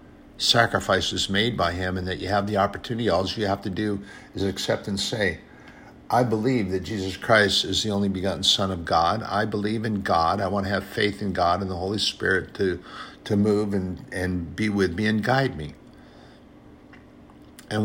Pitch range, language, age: 95-105 Hz, English, 60-79